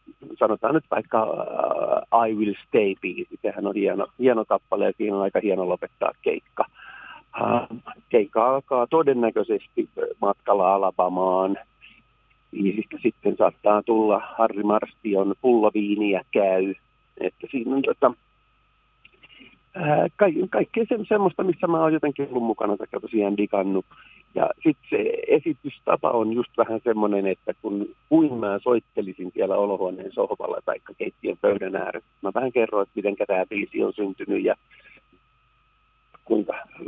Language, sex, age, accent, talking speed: Finnish, male, 50-69, native, 125 wpm